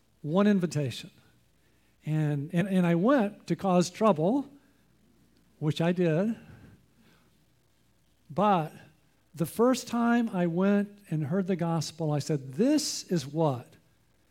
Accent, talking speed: American, 115 wpm